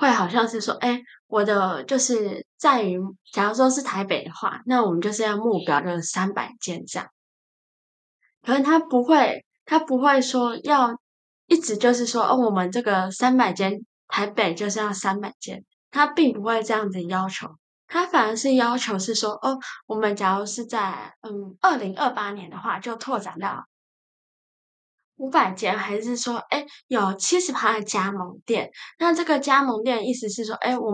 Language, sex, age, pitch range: Chinese, female, 10-29, 200-260 Hz